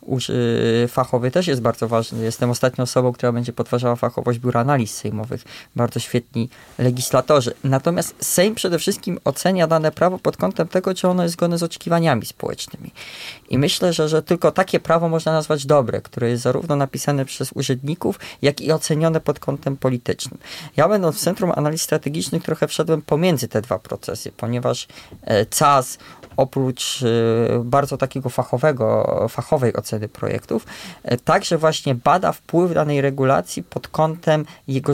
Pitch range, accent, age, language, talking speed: 125-160 Hz, native, 20-39, Polish, 155 wpm